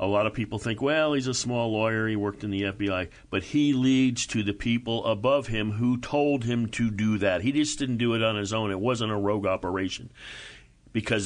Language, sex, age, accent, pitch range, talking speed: English, male, 50-69, American, 100-125 Hz, 230 wpm